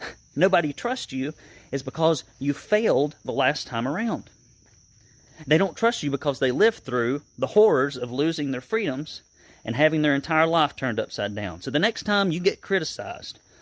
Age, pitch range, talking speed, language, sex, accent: 30-49, 115-165 Hz, 175 wpm, English, male, American